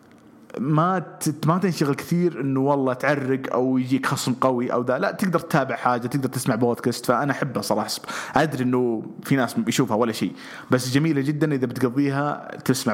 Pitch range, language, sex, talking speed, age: 115-145 Hz, English, male, 160 wpm, 30-49